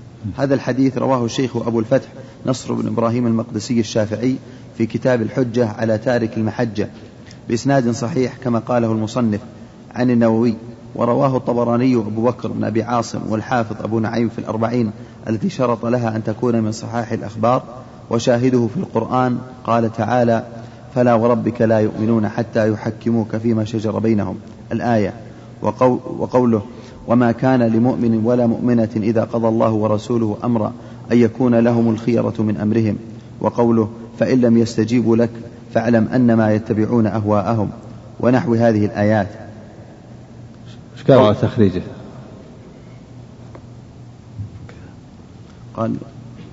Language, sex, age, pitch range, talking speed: Arabic, male, 30-49, 110-120 Hz, 115 wpm